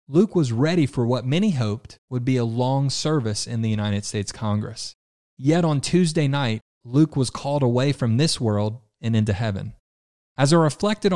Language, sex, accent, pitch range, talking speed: English, male, American, 110-145 Hz, 185 wpm